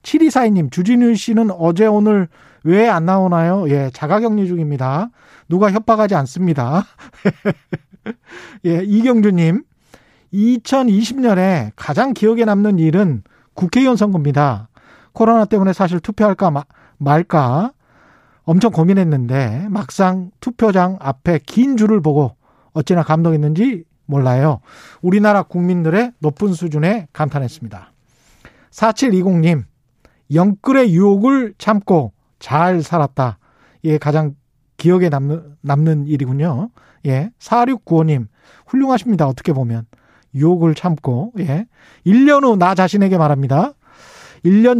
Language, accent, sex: Korean, native, male